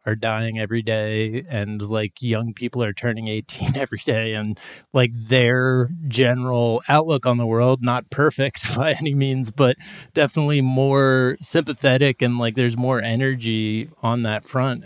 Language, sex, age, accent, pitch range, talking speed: English, male, 20-39, American, 110-135 Hz, 155 wpm